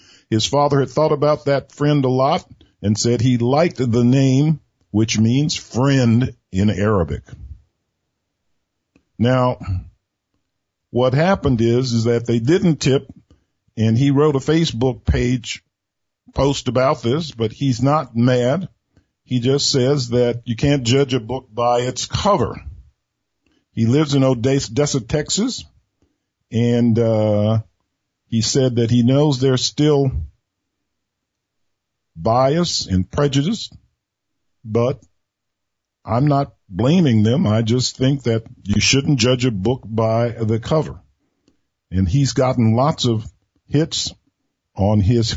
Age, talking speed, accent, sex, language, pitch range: 50-69, 125 wpm, American, male, English, 110-140 Hz